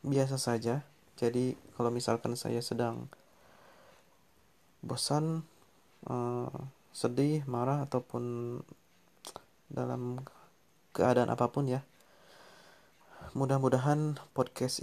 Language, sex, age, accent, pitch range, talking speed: Indonesian, male, 30-49, native, 120-135 Hz, 75 wpm